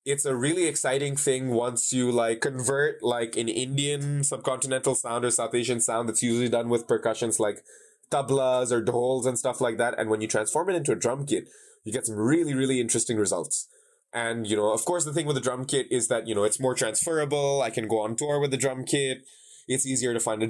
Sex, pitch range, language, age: male, 115-140 Hz, English, 20-39